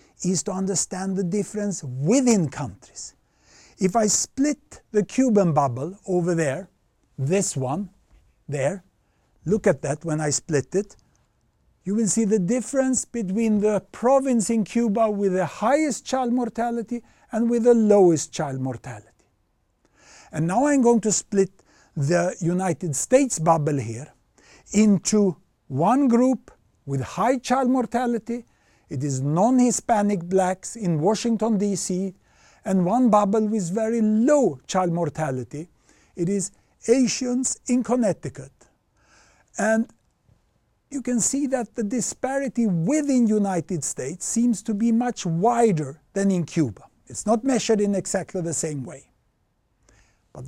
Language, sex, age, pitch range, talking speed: English, male, 60-79, 165-235 Hz, 135 wpm